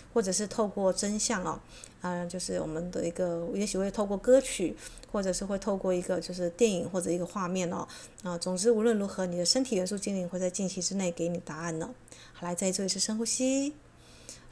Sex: female